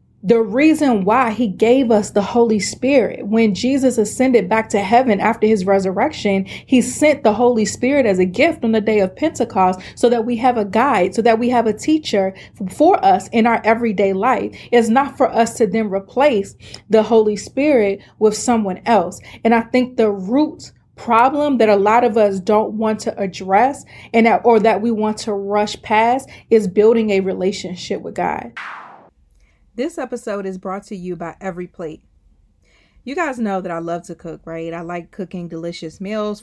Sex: female